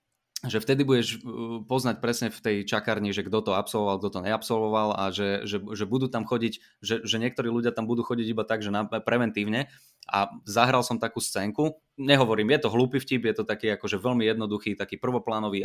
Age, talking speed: 20-39, 200 wpm